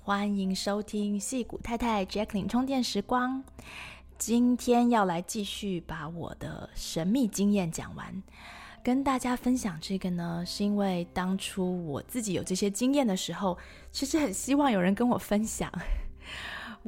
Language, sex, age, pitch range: Chinese, female, 20-39, 170-215 Hz